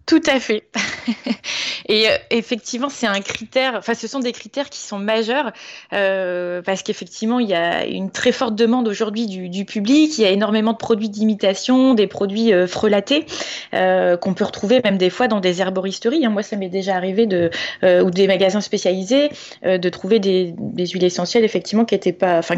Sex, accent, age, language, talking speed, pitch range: female, French, 20-39, French, 195 wpm, 190-245 Hz